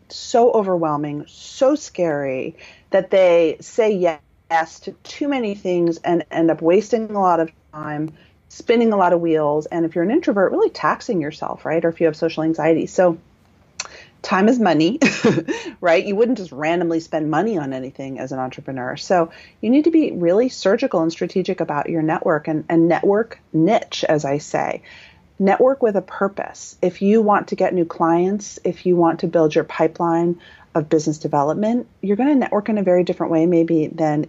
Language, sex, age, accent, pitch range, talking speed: English, female, 30-49, American, 160-205 Hz, 185 wpm